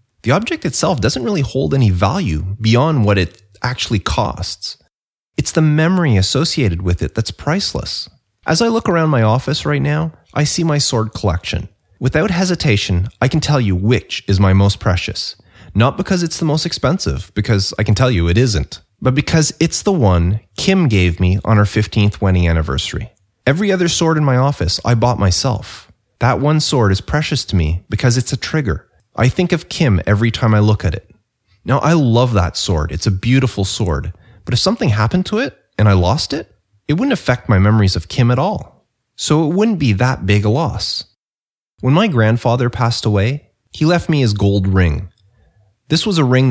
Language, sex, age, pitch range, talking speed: English, male, 30-49, 95-135 Hz, 195 wpm